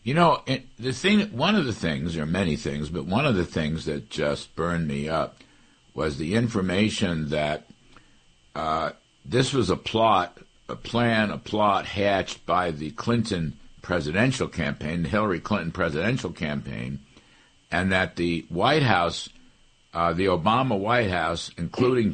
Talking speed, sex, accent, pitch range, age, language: 150 wpm, male, American, 85-115 Hz, 60-79, English